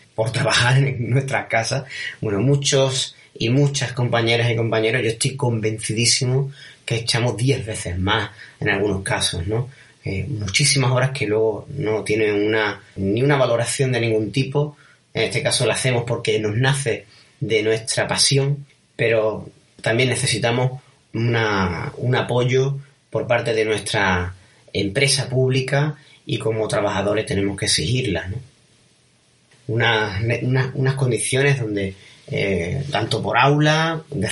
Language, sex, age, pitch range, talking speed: Spanish, male, 30-49, 110-140 Hz, 135 wpm